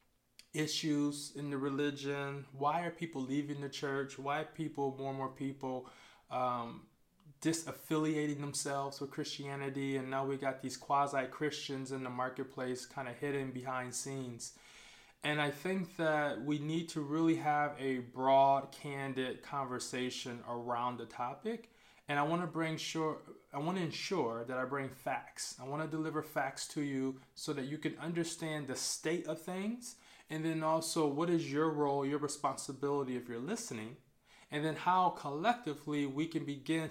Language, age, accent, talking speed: English, 20-39, American, 165 wpm